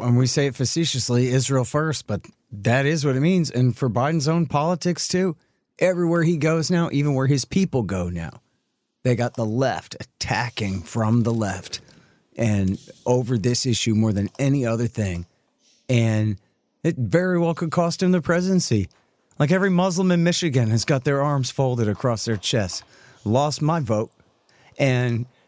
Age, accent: 40-59, American